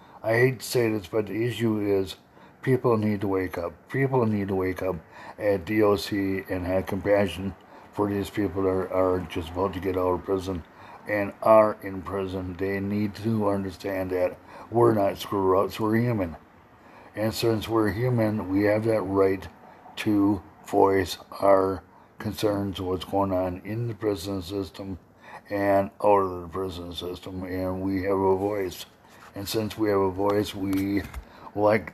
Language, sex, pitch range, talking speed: English, male, 95-110 Hz, 165 wpm